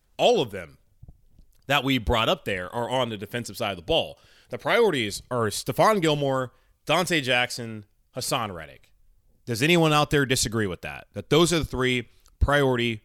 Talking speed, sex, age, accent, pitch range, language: 175 wpm, male, 20-39, American, 105-135 Hz, English